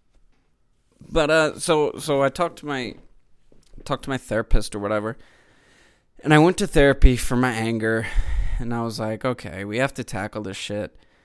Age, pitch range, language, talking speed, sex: 20-39, 105-130 Hz, English, 175 wpm, male